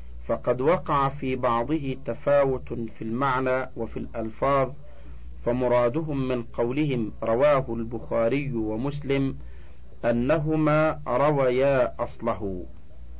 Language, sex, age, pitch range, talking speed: Arabic, male, 50-69, 105-145 Hz, 80 wpm